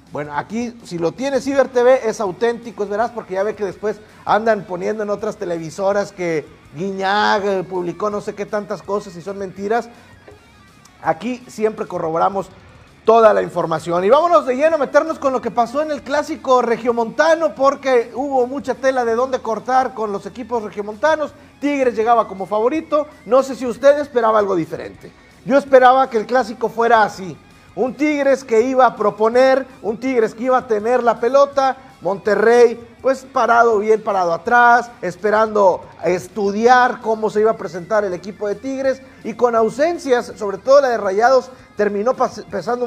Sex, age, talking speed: male, 50-69, 170 wpm